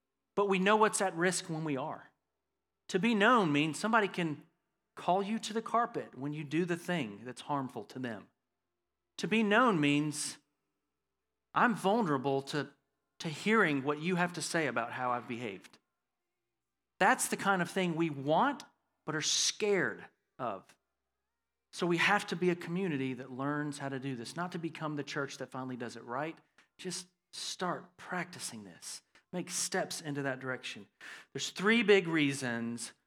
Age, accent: 40-59, American